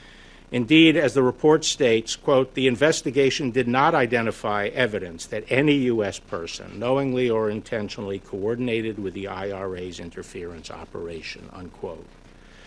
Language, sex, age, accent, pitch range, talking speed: English, male, 50-69, American, 95-130 Hz, 125 wpm